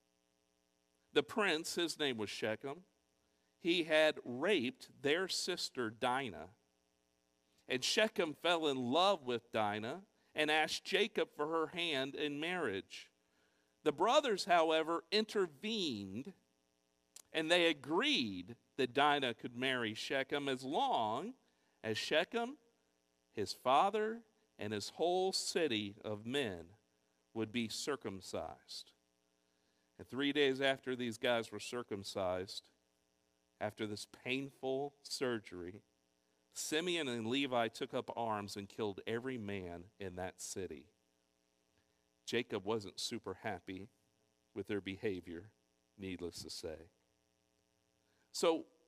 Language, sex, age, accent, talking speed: English, male, 50-69, American, 110 wpm